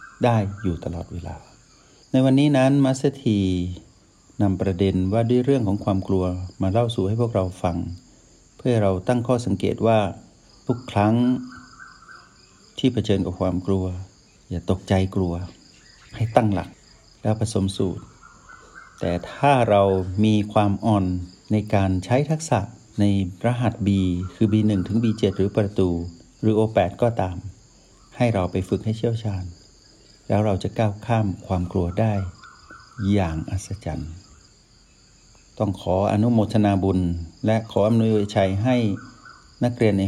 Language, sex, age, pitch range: Thai, male, 60-79, 95-110 Hz